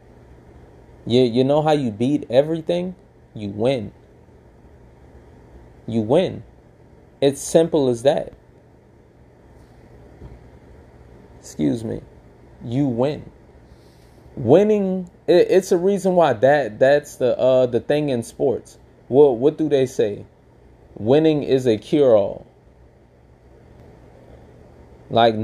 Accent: American